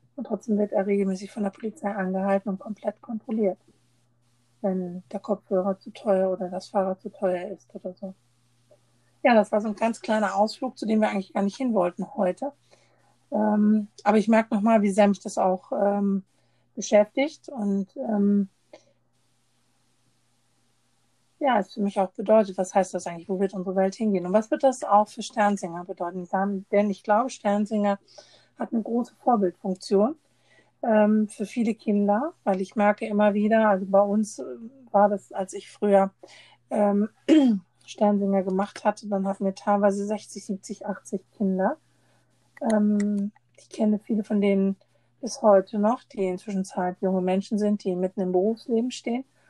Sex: female